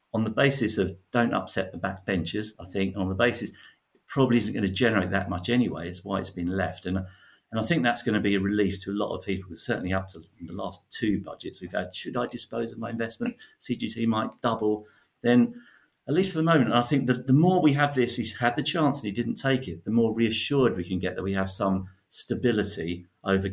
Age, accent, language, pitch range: 50-69, British, English, 90-120 Hz